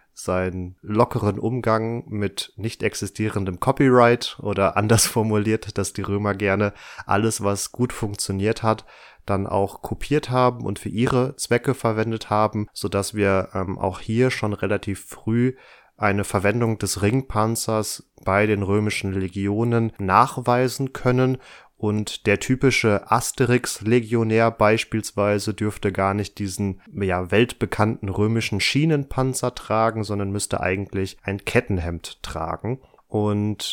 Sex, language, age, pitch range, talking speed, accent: male, German, 30-49, 100-120 Hz, 120 wpm, German